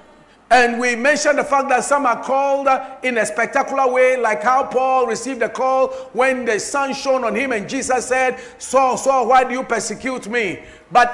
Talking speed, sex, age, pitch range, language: 205 wpm, male, 50-69, 210-265 Hz, English